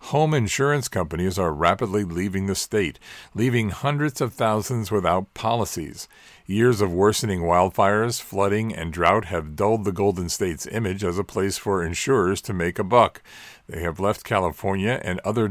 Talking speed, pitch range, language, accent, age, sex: 165 wpm, 95-115 Hz, English, American, 50-69, male